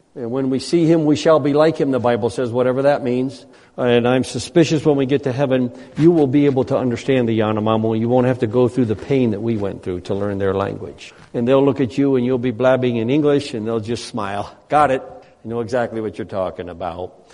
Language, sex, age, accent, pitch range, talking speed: English, male, 60-79, American, 120-165 Hz, 250 wpm